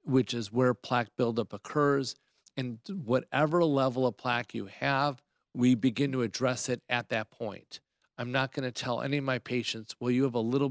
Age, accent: 50-69, American